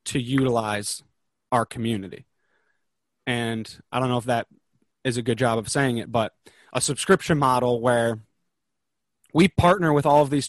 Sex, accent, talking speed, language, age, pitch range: male, American, 160 wpm, English, 20-39, 120-145 Hz